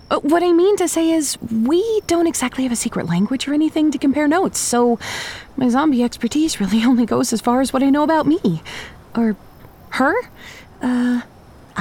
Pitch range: 195-310 Hz